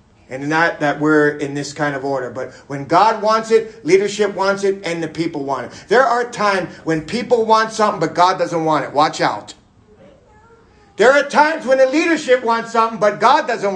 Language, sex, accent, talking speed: English, male, American, 205 wpm